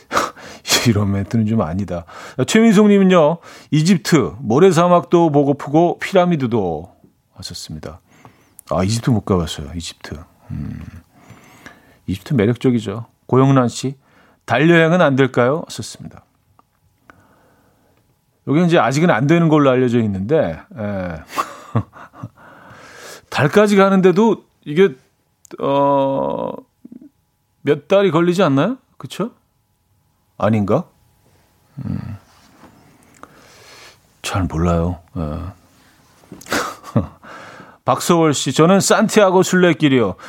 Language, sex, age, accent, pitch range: Korean, male, 40-59, native, 105-155 Hz